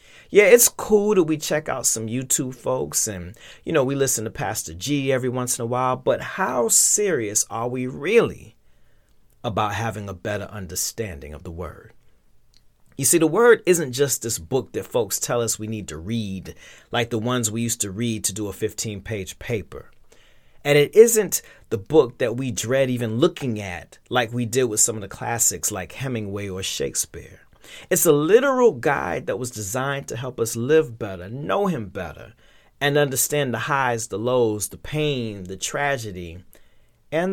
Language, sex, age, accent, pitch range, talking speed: English, male, 30-49, American, 105-145 Hz, 185 wpm